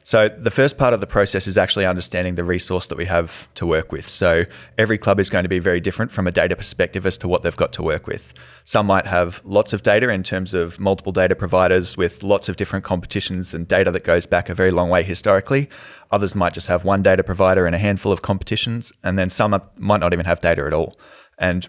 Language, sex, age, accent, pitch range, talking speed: English, male, 20-39, Australian, 85-100 Hz, 245 wpm